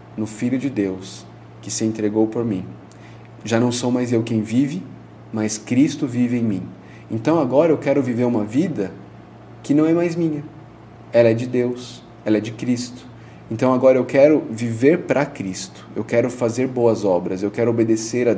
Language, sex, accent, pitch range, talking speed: Portuguese, male, Brazilian, 110-125 Hz, 185 wpm